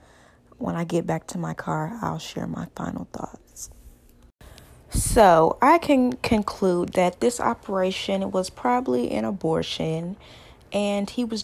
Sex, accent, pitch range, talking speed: female, American, 160-200 Hz, 135 wpm